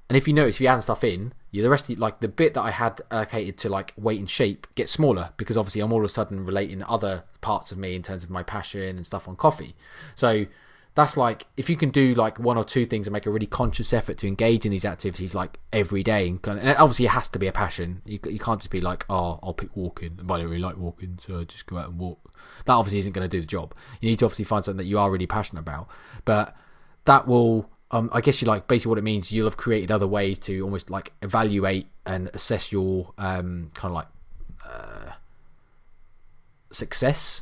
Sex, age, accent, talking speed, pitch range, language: male, 20-39, British, 255 wpm, 95-120 Hz, English